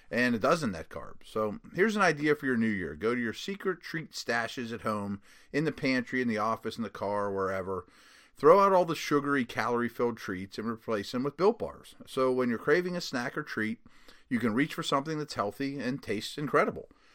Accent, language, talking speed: American, English, 220 wpm